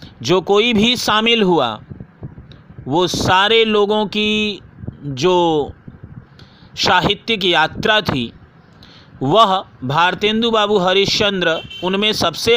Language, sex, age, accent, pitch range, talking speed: Hindi, male, 50-69, native, 160-210 Hz, 90 wpm